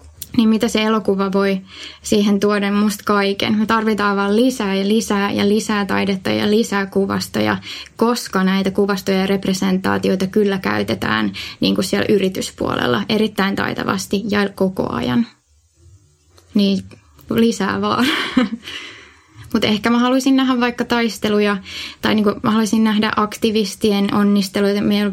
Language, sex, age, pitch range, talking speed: Finnish, female, 20-39, 130-215 Hz, 125 wpm